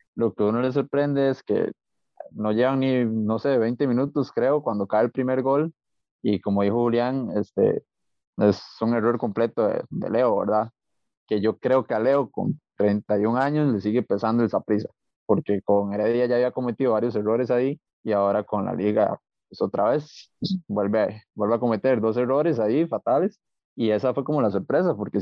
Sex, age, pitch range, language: male, 20-39, 110-140 Hz, Spanish